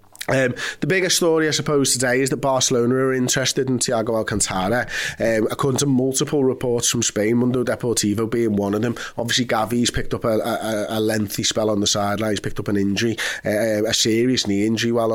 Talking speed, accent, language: 200 wpm, British, English